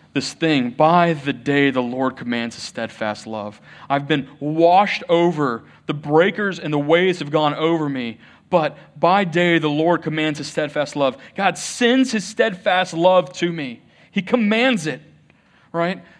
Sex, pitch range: male, 150-195 Hz